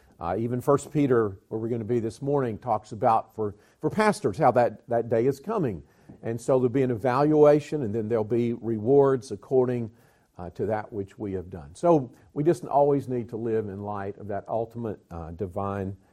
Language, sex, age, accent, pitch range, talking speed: English, male, 50-69, American, 110-135 Hz, 205 wpm